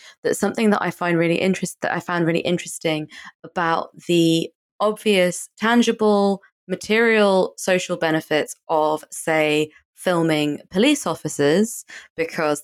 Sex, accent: female, British